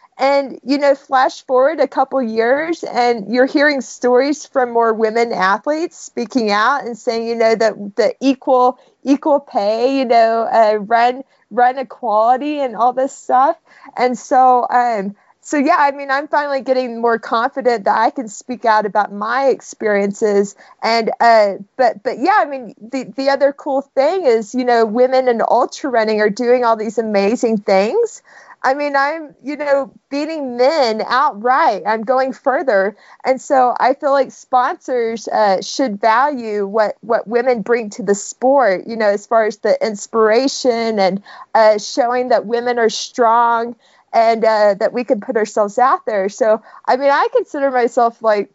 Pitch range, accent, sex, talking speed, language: 225-275 Hz, American, female, 170 wpm, English